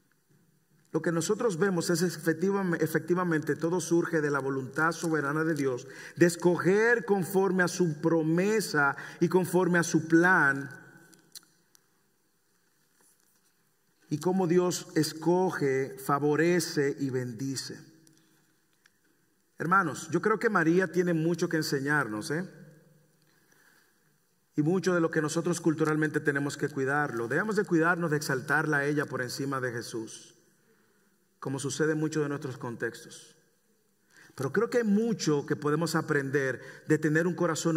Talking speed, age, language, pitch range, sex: 130 wpm, 50-69, English, 145-175 Hz, male